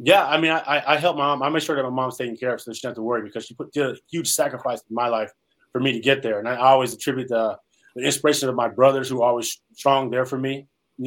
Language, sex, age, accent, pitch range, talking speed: English, male, 20-39, American, 120-140 Hz, 300 wpm